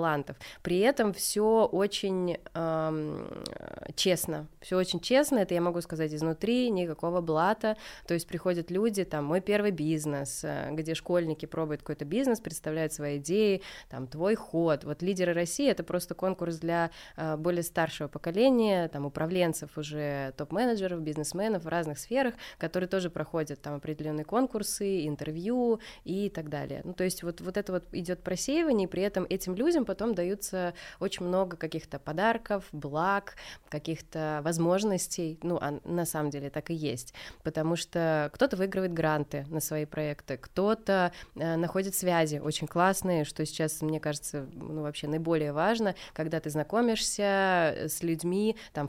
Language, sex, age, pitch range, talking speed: Russian, female, 20-39, 155-190 Hz, 150 wpm